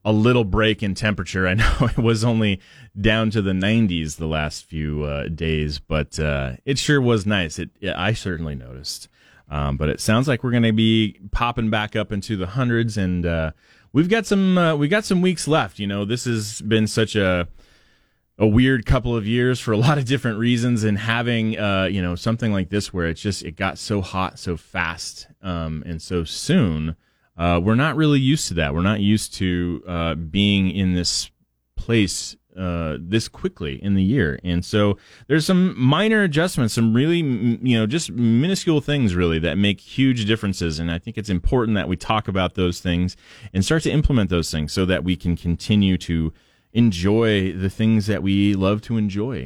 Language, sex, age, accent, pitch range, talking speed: English, male, 30-49, American, 85-115 Hz, 205 wpm